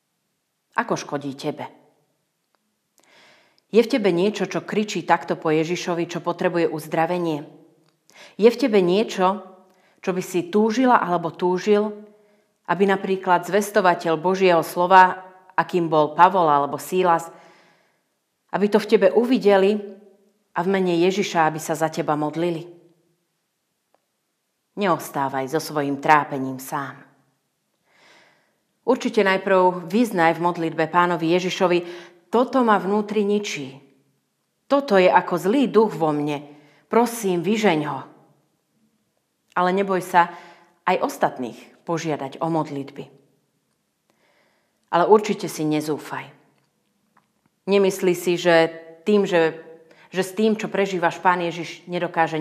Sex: female